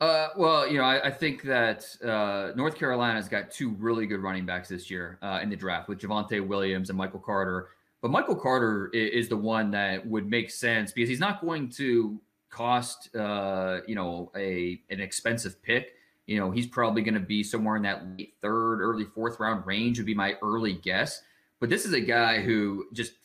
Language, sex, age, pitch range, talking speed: English, male, 30-49, 105-130 Hz, 210 wpm